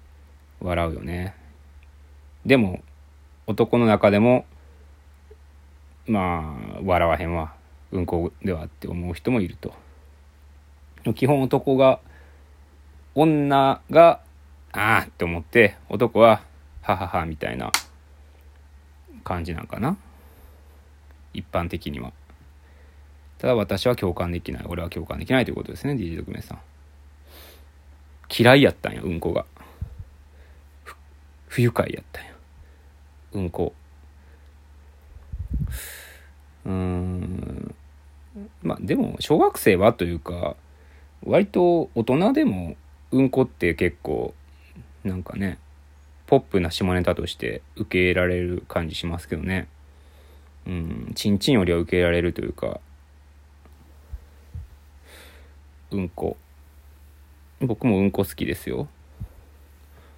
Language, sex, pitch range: Japanese, male, 75-90 Hz